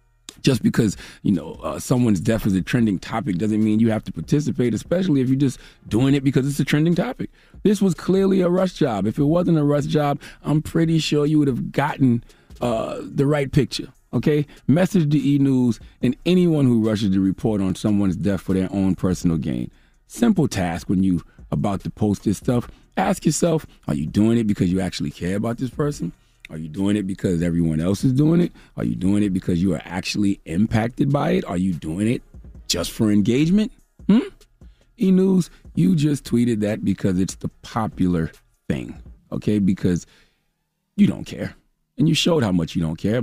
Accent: American